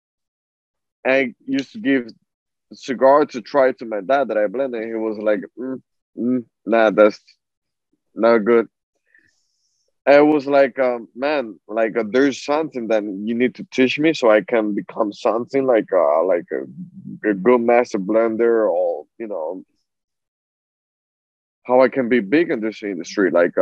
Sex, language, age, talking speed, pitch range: male, English, 20-39, 160 wpm, 110-135 Hz